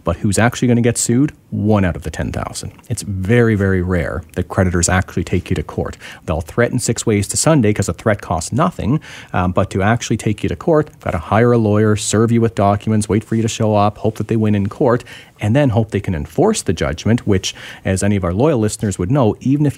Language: English